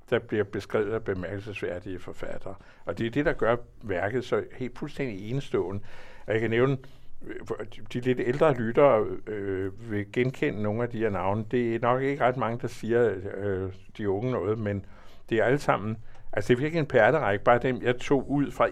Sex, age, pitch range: male, 60-79, 100-125 Hz